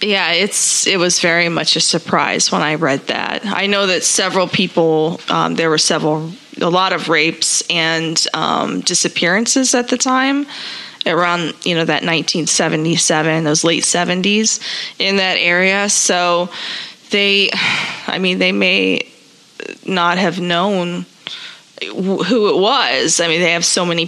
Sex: female